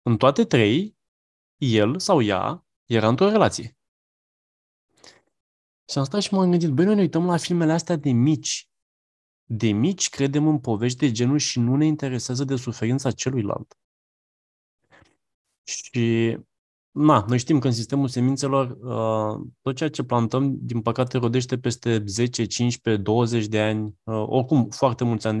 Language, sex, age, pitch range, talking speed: Romanian, male, 20-39, 110-140 Hz, 150 wpm